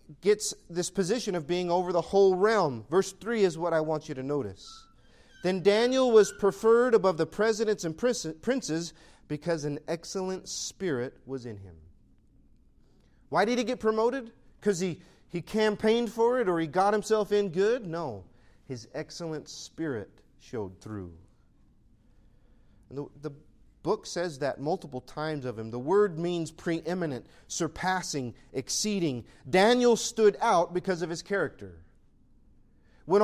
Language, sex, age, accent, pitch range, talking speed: English, male, 40-59, American, 150-215 Hz, 150 wpm